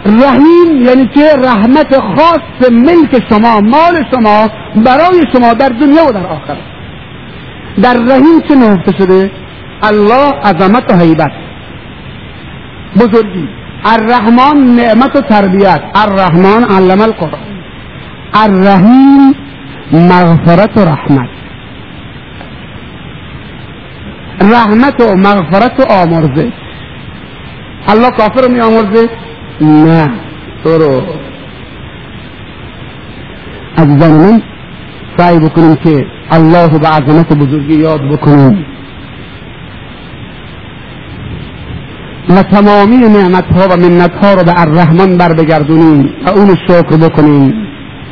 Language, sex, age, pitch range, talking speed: Persian, male, 50-69, 165-235 Hz, 100 wpm